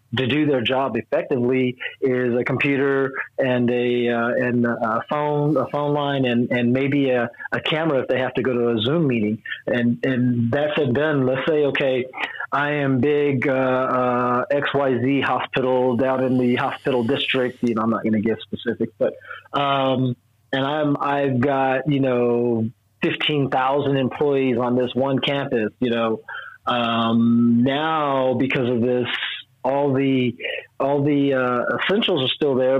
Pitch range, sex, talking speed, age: 125-140 Hz, male, 165 wpm, 30-49